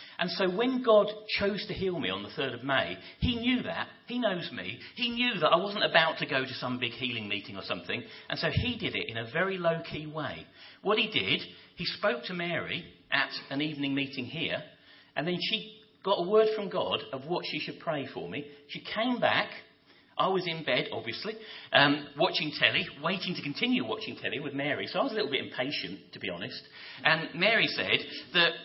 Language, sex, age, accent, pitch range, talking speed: English, male, 40-59, British, 155-215 Hz, 215 wpm